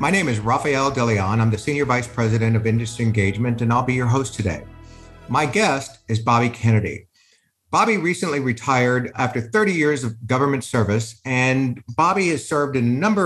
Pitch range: 115-160 Hz